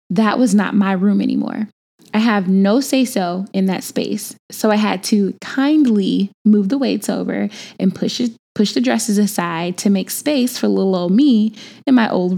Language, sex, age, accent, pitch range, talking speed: English, female, 10-29, American, 200-245 Hz, 190 wpm